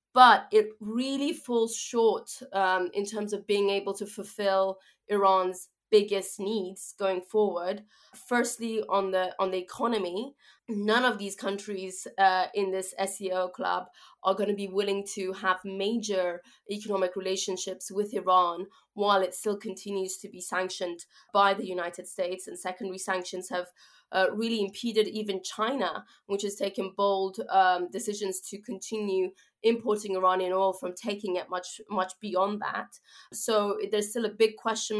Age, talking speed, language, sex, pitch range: 20-39, 155 wpm, English, female, 190-215 Hz